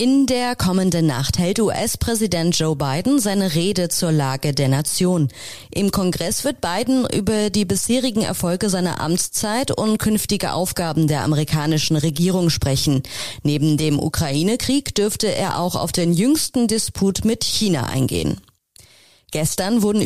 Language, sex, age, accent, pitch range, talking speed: German, female, 30-49, German, 150-200 Hz, 140 wpm